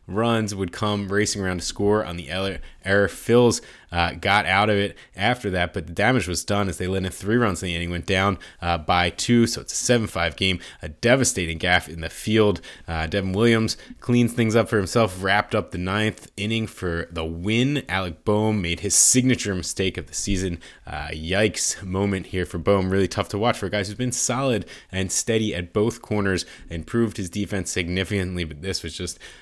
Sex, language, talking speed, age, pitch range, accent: male, English, 210 wpm, 20-39, 90-110 Hz, American